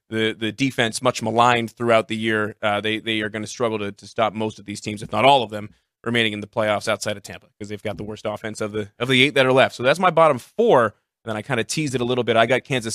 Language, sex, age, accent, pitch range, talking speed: English, male, 30-49, American, 110-135 Hz, 305 wpm